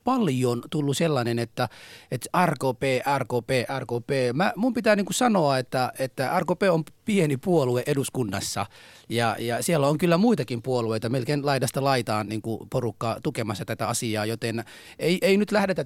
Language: Finnish